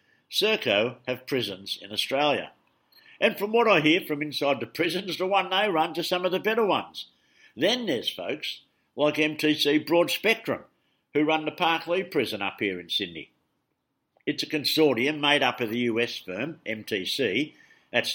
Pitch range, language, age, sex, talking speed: 120-160 Hz, English, 60-79, male, 170 wpm